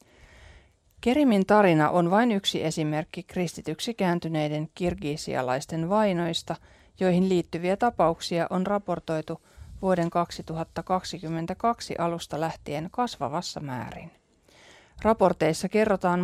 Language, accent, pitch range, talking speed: Finnish, native, 155-200 Hz, 80 wpm